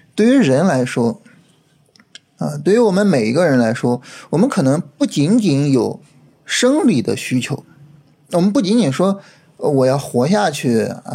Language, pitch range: Chinese, 135-200 Hz